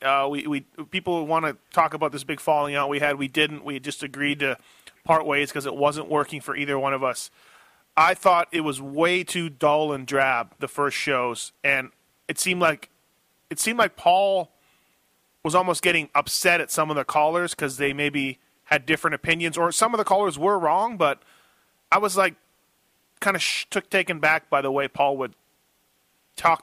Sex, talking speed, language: male, 200 wpm, English